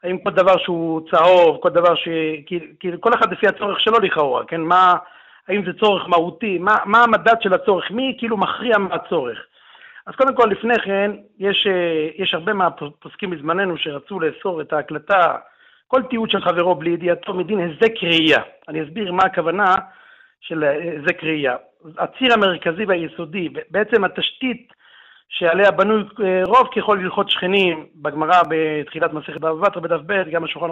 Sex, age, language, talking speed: male, 50-69, Hebrew, 155 wpm